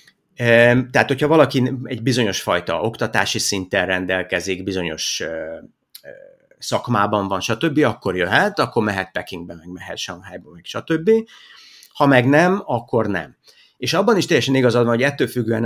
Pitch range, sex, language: 100-145 Hz, male, Hungarian